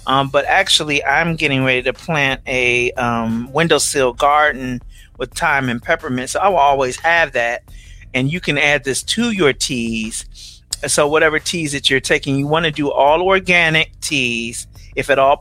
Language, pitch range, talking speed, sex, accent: English, 125-155 Hz, 180 wpm, male, American